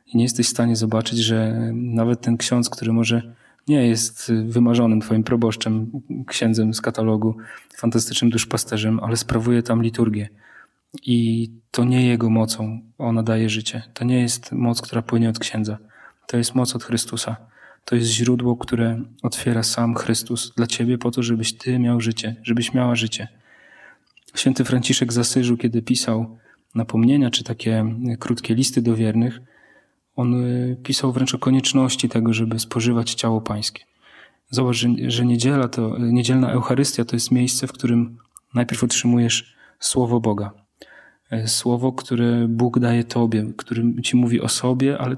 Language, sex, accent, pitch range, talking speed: Polish, male, native, 115-125 Hz, 150 wpm